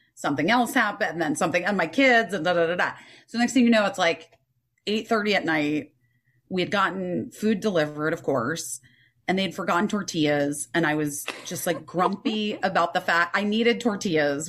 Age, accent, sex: 30-49, American, female